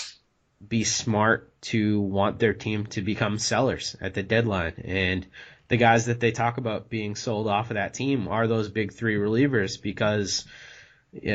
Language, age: English, 30-49